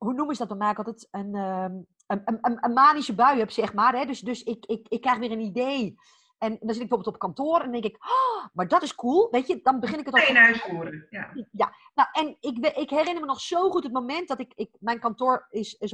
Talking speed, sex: 270 wpm, female